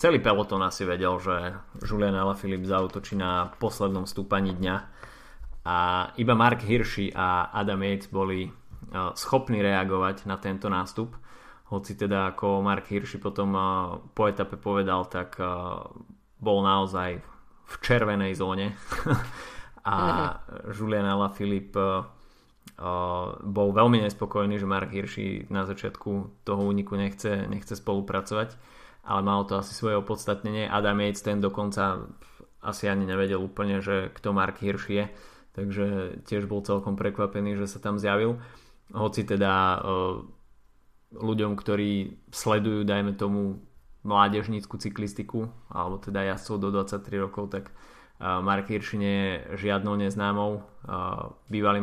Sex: male